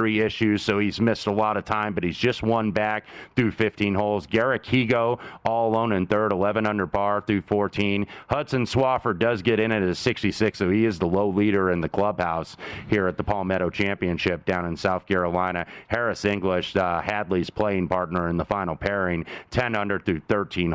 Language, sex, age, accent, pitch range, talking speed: English, male, 30-49, American, 95-110 Hz, 195 wpm